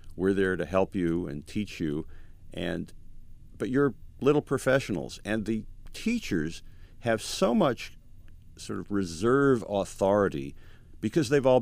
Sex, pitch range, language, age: male, 85-110 Hz, English, 50-69